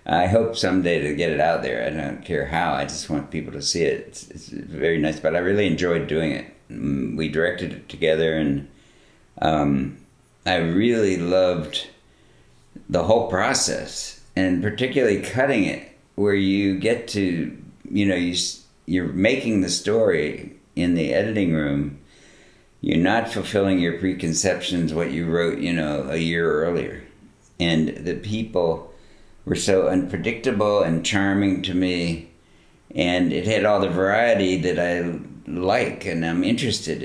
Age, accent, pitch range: 50-69, American, 85-100 Hz